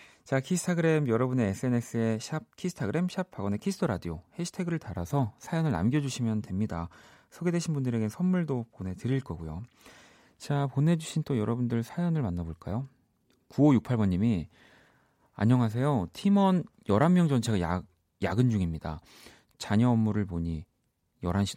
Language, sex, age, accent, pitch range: Korean, male, 30-49, native, 95-145 Hz